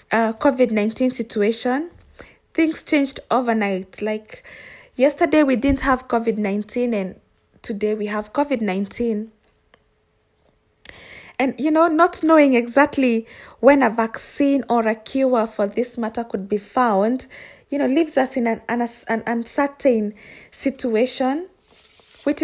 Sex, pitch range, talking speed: female, 225-280 Hz, 125 wpm